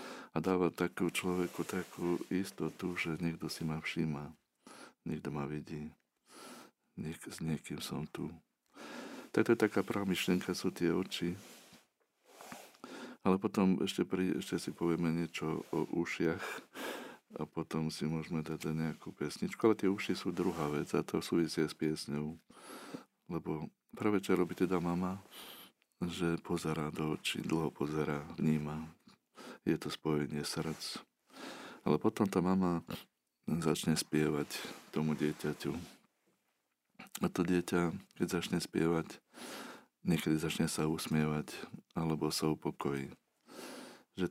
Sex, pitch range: male, 75-90 Hz